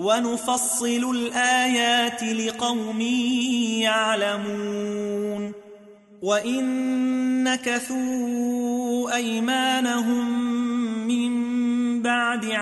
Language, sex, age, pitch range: Arabic, male, 30-49, 225-250 Hz